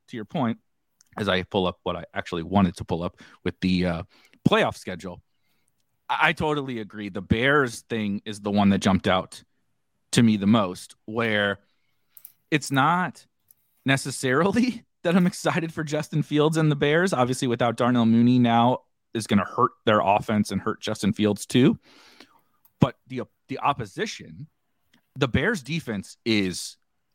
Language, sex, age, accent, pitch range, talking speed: English, male, 30-49, American, 110-165 Hz, 160 wpm